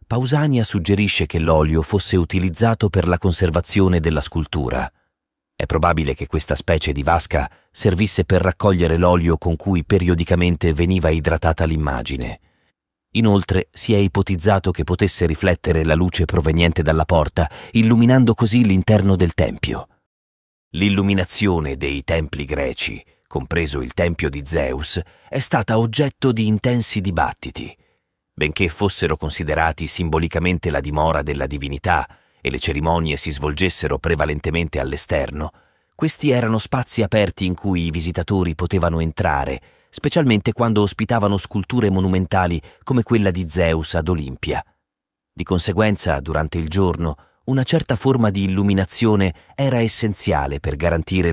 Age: 40-59